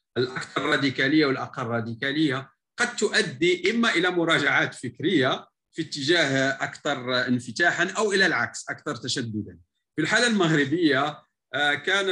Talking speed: 115 wpm